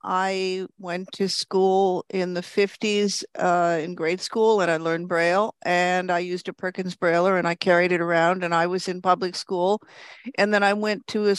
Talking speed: 200 wpm